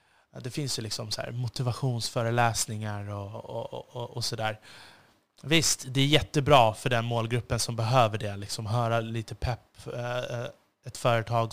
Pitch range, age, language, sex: 110-130 Hz, 20-39, Swedish, male